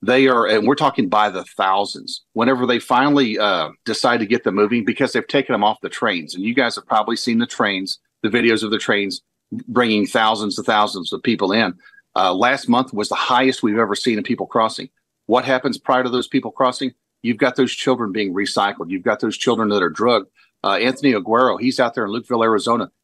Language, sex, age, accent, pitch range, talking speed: English, male, 40-59, American, 105-130 Hz, 220 wpm